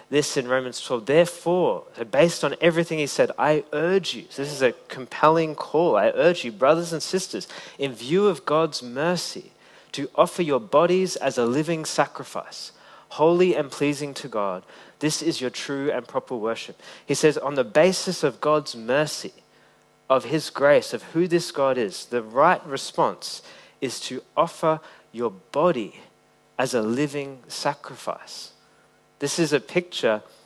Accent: Australian